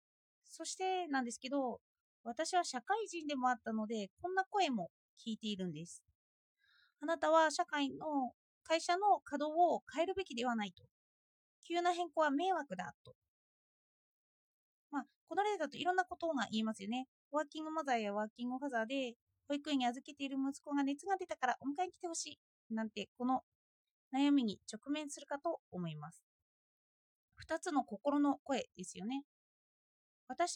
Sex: female